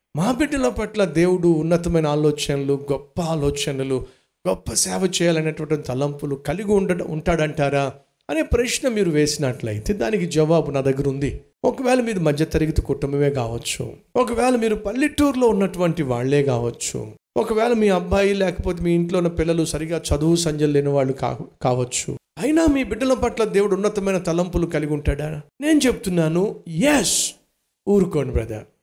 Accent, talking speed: native, 130 wpm